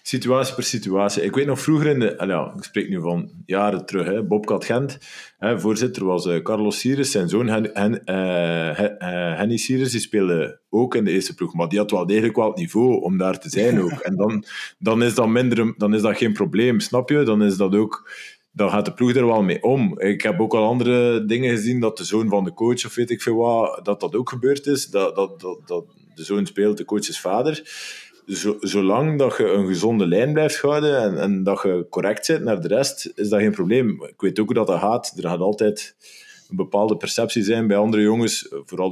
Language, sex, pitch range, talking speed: Dutch, male, 100-130 Hz, 235 wpm